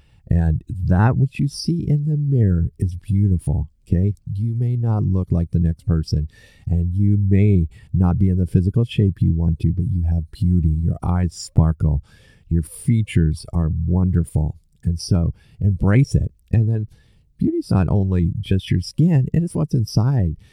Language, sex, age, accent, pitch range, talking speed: English, male, 50-69, American, 85-115 Hz, 170 wpm